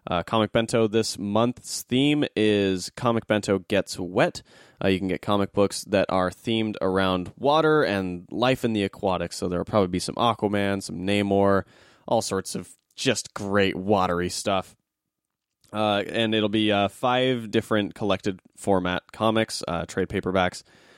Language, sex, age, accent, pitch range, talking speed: English, male, 20-39, American, 95-115 Hz, 160 wpm